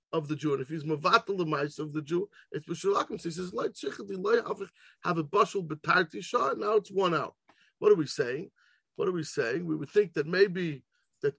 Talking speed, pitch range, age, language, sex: 190 wpm, 155-205 Hz, 50-69, English, male